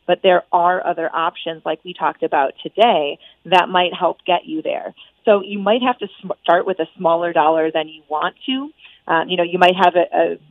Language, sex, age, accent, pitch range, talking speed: English, female, 30-49, American, 160-185 Hz, 225 wpm